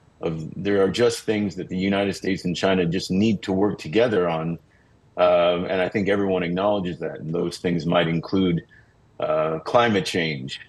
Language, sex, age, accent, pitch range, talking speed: English, male, 40-59, American, 90-115 Hz, 180 wpm